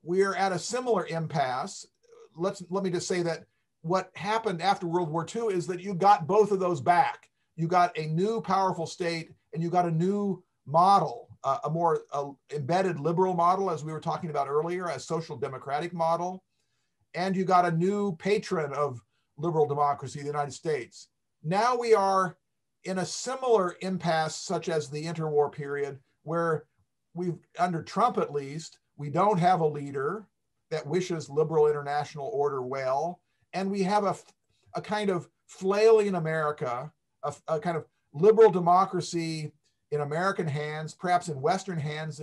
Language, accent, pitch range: English, American, 150-190 Hz